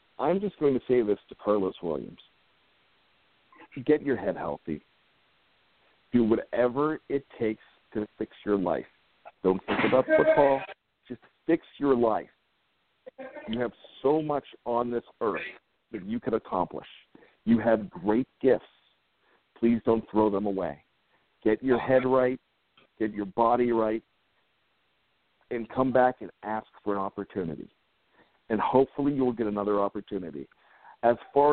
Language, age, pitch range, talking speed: English, 50-69, 110-135 Hz, 140 wpm